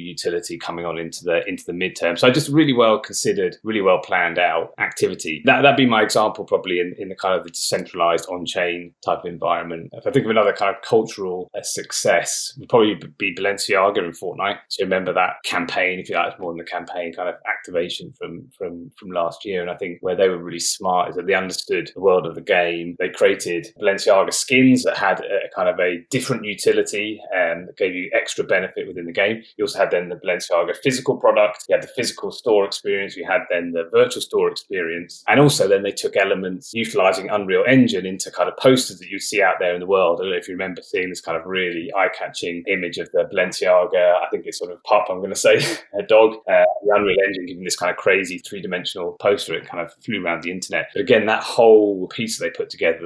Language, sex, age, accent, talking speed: English, male, 20-39, British, 235 wpm